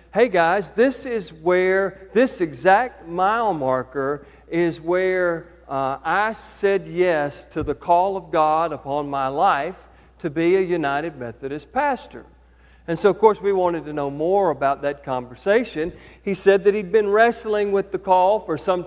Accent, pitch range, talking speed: American, 155-195 Hz, 165 wpm